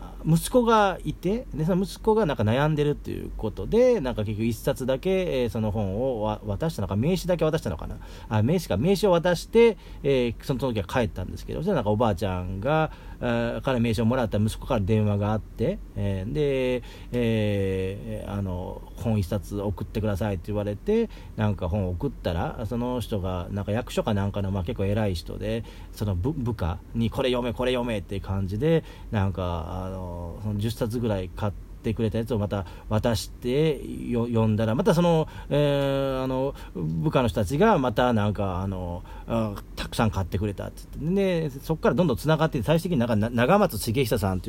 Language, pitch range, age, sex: Japanese, 100-140 Hz, 40-59, male